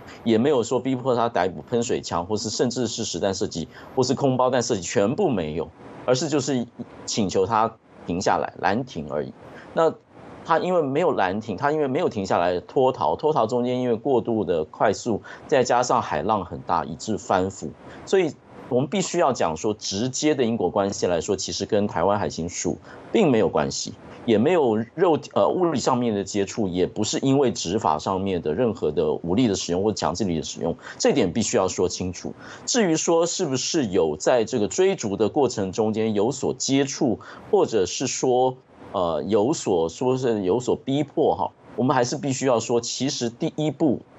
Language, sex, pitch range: Chinese, male, 100-135 Hz